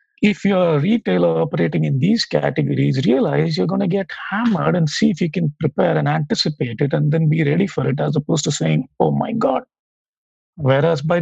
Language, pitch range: English, 135-180 Hz